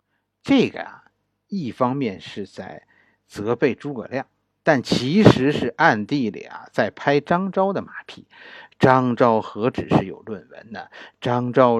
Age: 50-69